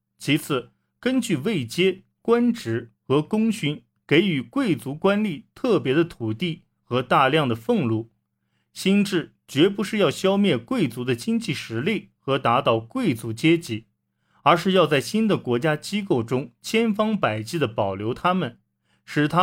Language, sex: Chinese, male